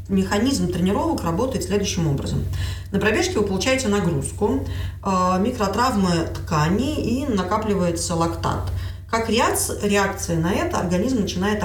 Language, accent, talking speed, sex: Russian, native, 110 wpm, female